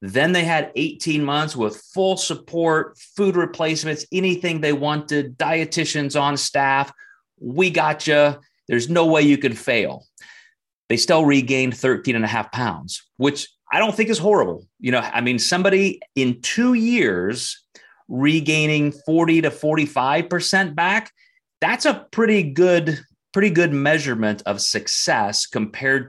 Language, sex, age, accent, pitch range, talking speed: English, male, 30-49, American, 110-160 Hz, 145 wpm